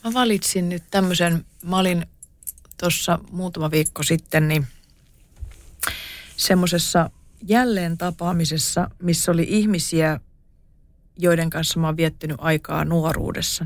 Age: 30-49